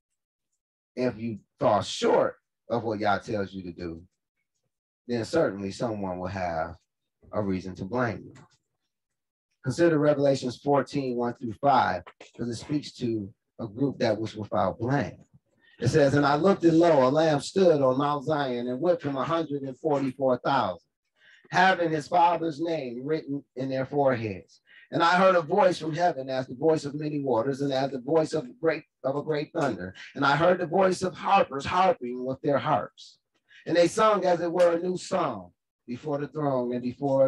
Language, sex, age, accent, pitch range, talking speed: English, male, 30-49, American, 125-175 Hz, 175 wpm